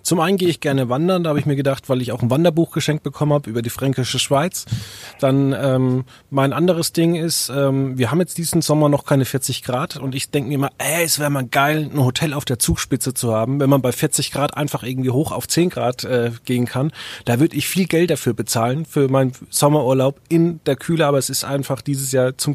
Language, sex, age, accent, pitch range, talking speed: German, male, 30-49, German, 125-150 Hz, 235 wpm